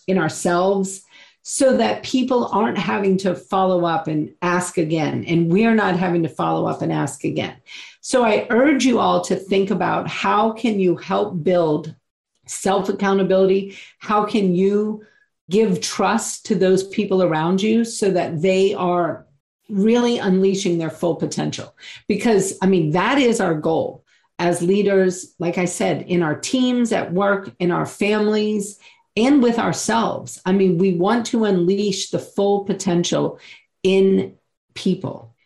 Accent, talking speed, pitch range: American, 150 wpm, 175-210 Hz